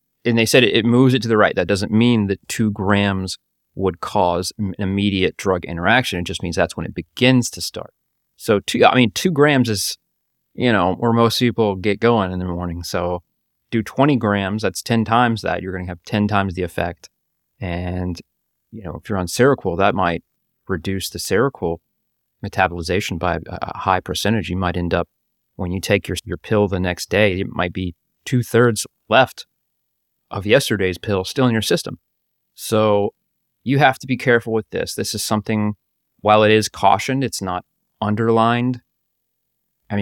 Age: 30-49